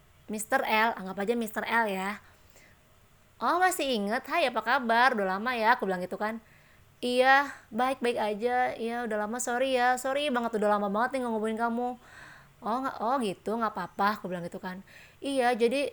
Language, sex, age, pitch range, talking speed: Indonesian, female, 20-39, 210-250 Hz, 180 wpm